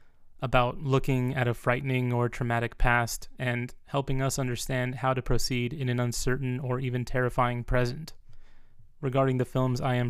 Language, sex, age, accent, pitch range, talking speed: English, male, 20-39, American, 120-130 Hz, 160 wpm